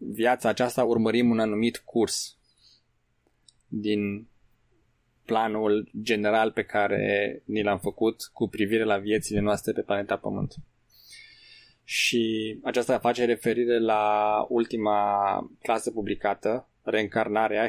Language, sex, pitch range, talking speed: Romanian, male, 105-125 Hz, 105 wpm